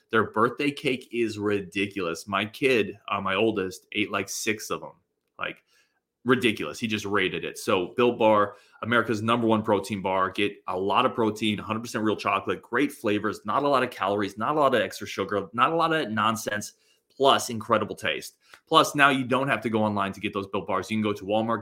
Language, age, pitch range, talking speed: English, 30-49, 100-115 Hz, 210 wpm